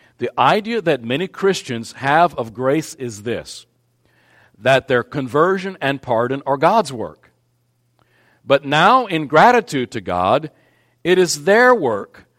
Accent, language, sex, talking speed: American, English, male, 135 wpm